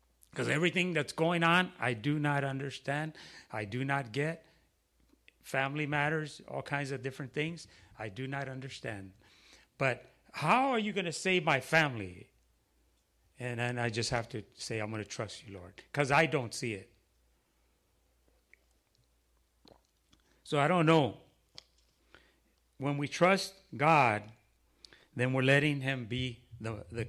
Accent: American